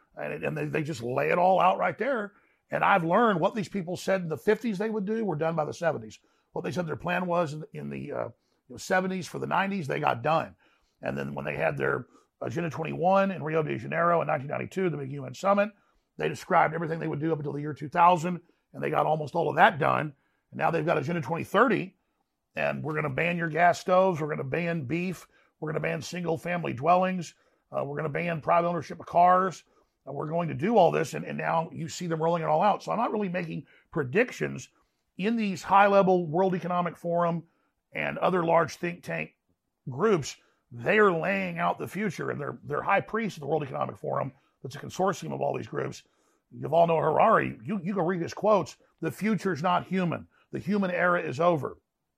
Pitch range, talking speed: 160-185 Hz, 230 wpm